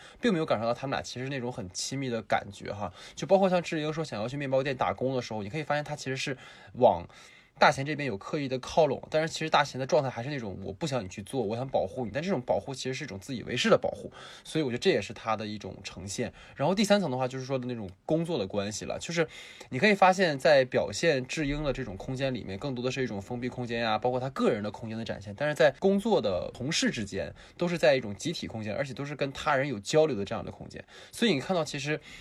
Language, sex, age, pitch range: Chinese, male, 20-39, 105-140 Hz